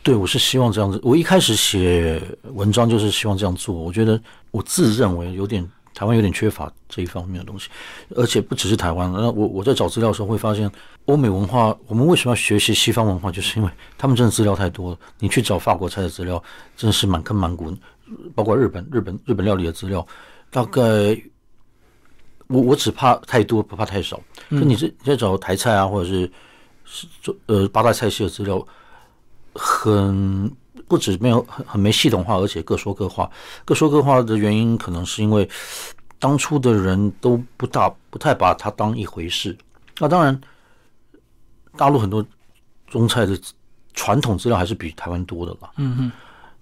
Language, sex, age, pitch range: Chinese, male, 60-79, 95-120 Hz